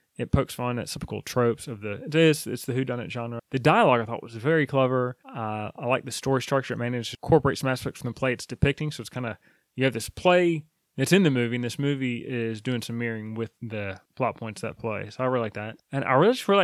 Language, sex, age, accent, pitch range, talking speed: English, male, 20-39, American, 115-150 Hz, 265 wpm